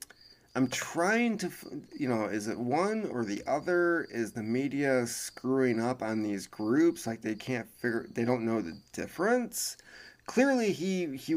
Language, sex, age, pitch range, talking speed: English, male, 20-39, 110-140 Hz, 165 wpm